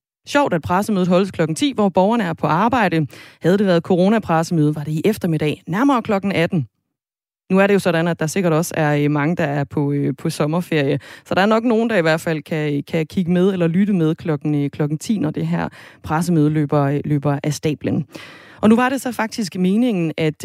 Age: 20-39